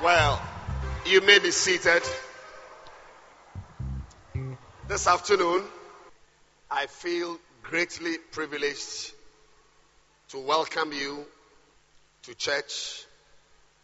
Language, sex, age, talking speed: English, male, 50-69, 70 wpm